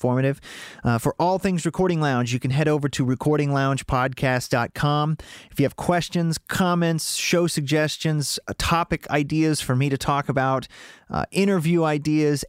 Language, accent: English, American